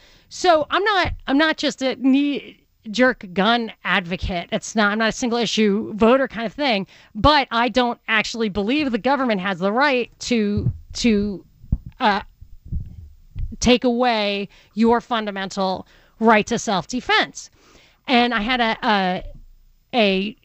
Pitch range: 205-270 Hz